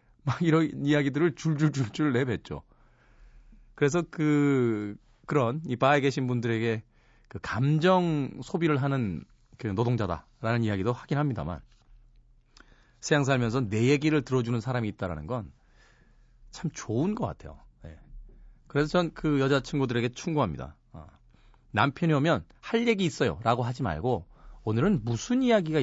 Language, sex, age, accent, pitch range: Korean, male, 40-59, native, 115-140 Hz